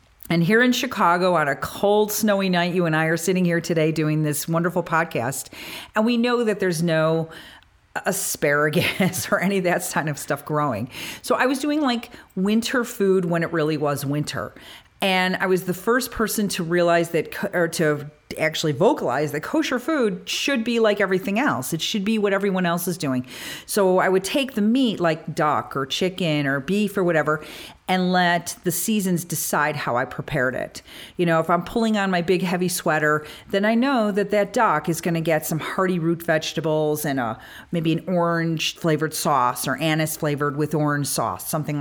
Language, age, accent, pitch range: English, 40-59, American, 155-205 Hz